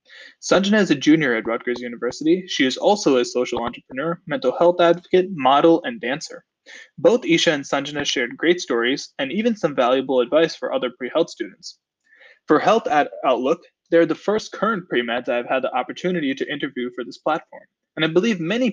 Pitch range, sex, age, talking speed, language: 130-195 Hz, male, 20-39, 180 wpm, English